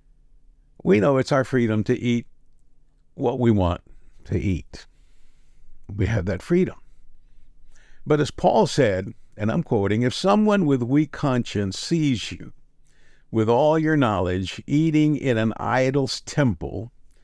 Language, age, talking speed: English, 60-79, 135 wpm